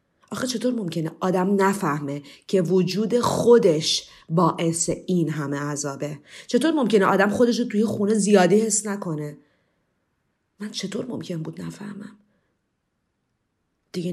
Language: Persian